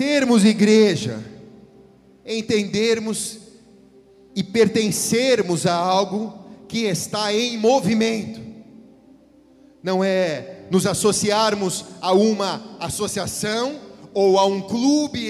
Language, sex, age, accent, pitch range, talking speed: Portuguese, male, 40-59, Brazilian, 195-260 Hz, 85 wpm